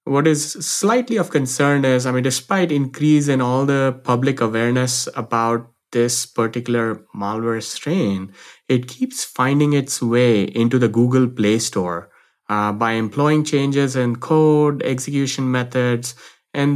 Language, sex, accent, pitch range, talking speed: English, male, Indian, 115-140 Hz, 140 wpm